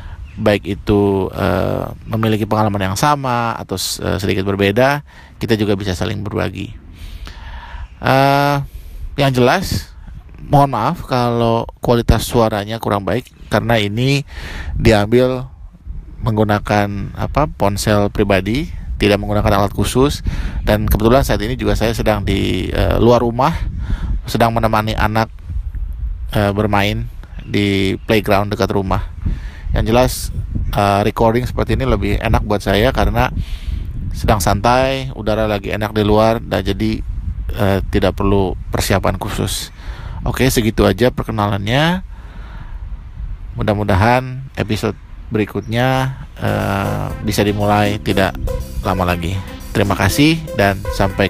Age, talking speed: 20-39, 115 wpm